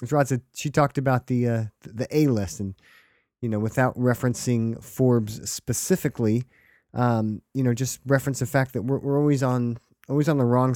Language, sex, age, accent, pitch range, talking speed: English, male, 30-49, American, 110-135 Hz, 180 wpm